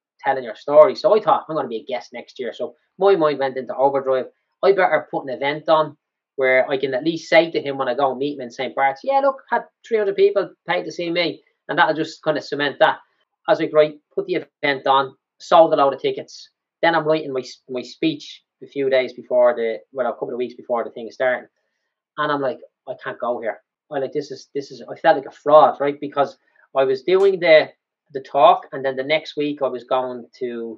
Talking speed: 250 wpm